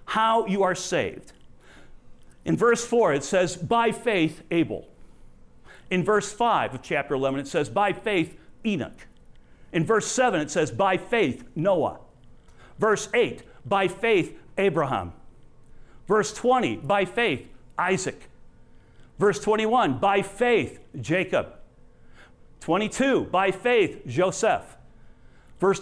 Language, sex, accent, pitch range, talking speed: English, male, American, 135-225 Hz, 120 wpm